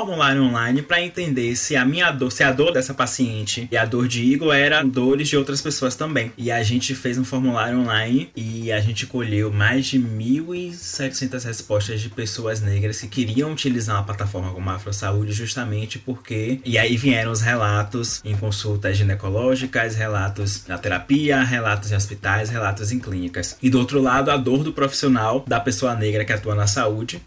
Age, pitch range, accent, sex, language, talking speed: 20-39, 105-135 Hz, Brazilian, male, Portuguese, 185 wpm